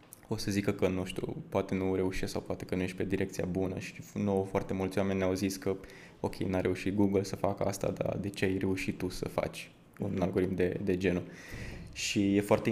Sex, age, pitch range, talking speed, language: male, 20-39, 95-105 Hz, 225 wpm, Romanian